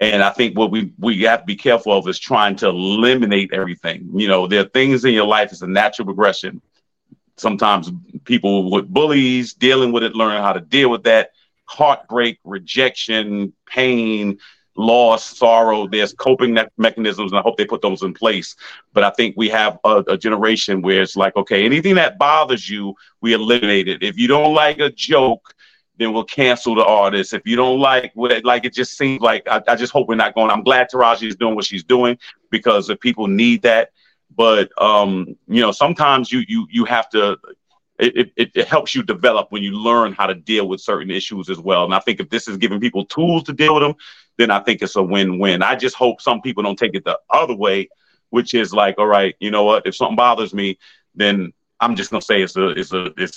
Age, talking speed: 40-59, 220 wpm